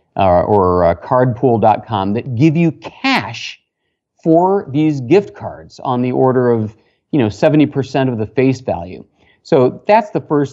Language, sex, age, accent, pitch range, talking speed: English, male, 40-59, American, 115-165 Hz, 155 wpm